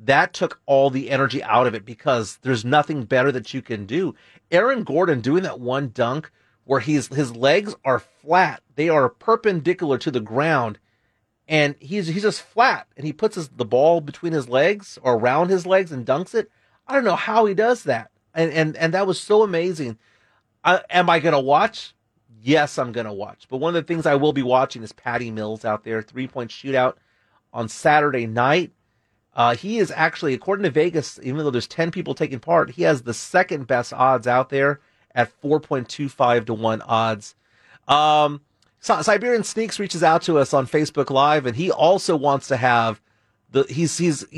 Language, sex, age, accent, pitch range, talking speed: English, male, 30-49, American, 120-160 Hz, 195 wpm